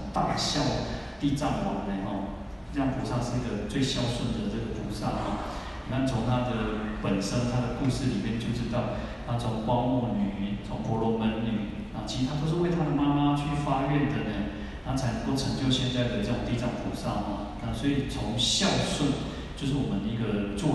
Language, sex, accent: Chinese, male, native